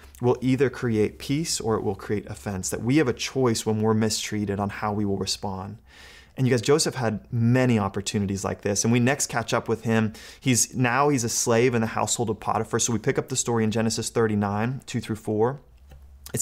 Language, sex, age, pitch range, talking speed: English, male, 20-39, 105-125 Hz, 225 wpm